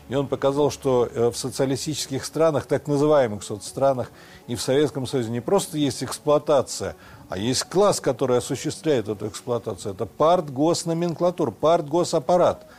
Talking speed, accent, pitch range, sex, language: 130 wpm, native, 120-155 Hz, male, Russian